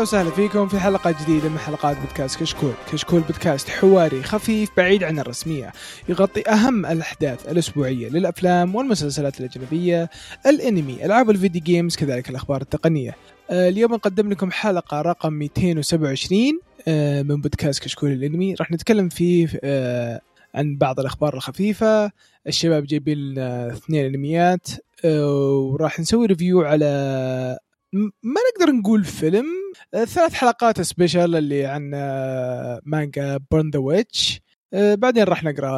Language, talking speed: Arabic, 125 wpm